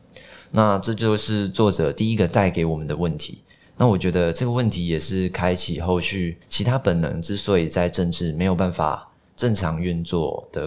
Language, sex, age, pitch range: Chinese, male, 20-39, 85-105 Hz